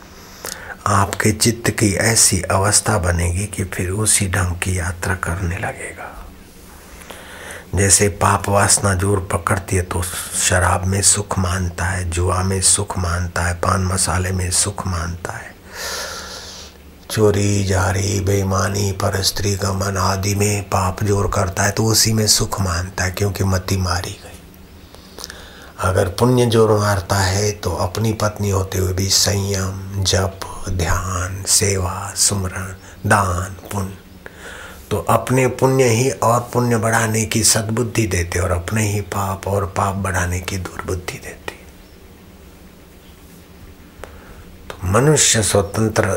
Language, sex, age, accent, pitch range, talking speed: Hindi, male, 60-79, native, 90-105 Hz, 130 wpm